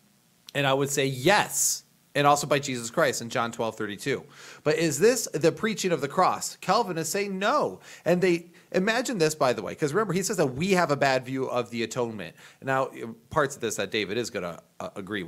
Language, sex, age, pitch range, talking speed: English, male, 30-49, 125-165 Hz, 225 wpm